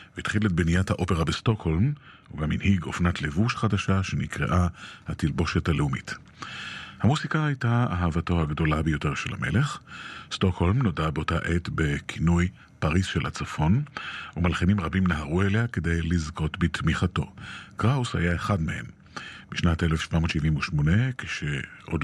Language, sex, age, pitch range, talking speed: Hebrew, male, 40-59, 80-100 Hz, 115 wpm